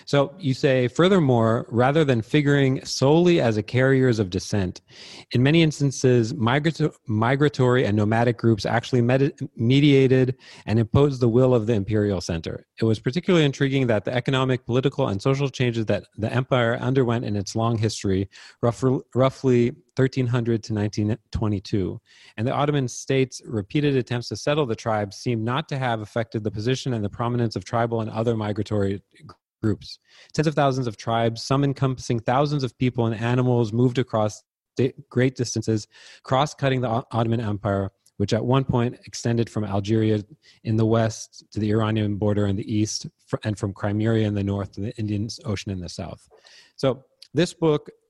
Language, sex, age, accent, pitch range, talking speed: English, male, 30-49, American, 110-130 Hz, 165 wpm